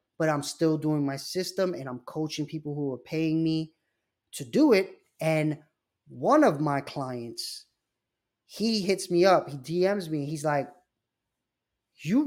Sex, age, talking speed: male, 20-39, 155 wpm